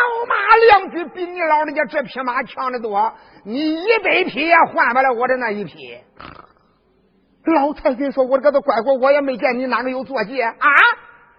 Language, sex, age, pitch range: Chinese, male, 50-69, 255-370 Hz